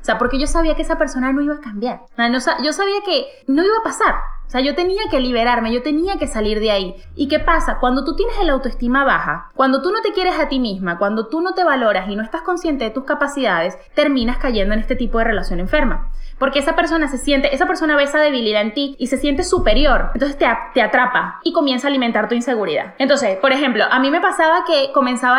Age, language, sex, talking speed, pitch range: 10-29, English, female, 250 wpm, 250-330 Hz